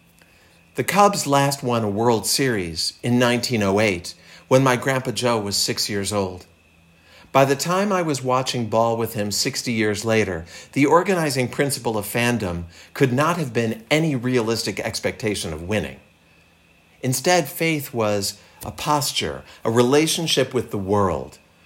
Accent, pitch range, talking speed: American, 85-130 Hz, 145 wpm